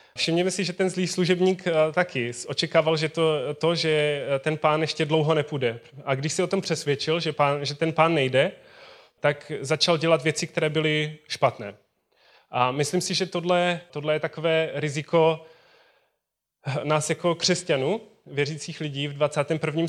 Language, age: Czech, 20-39